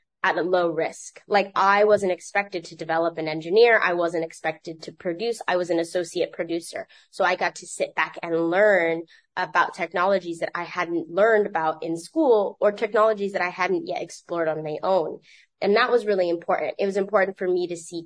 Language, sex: English, female